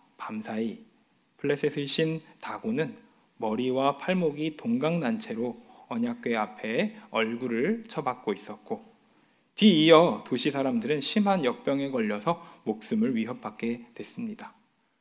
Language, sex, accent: Korean, male, native